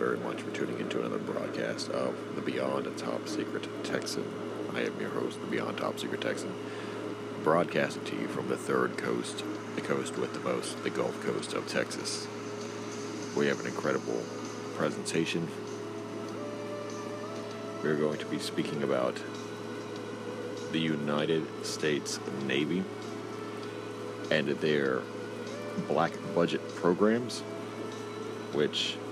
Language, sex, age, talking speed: English, male, 40-59, 130 wpm